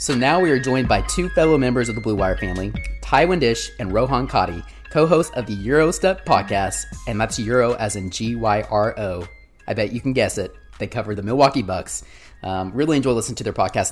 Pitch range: 95-125 Hz